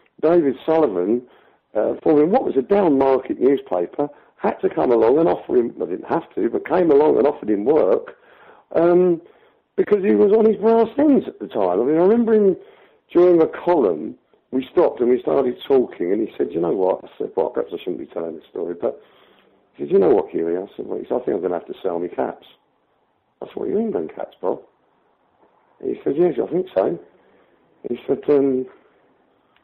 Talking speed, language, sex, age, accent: 225 wpm, English, male, 50-69, British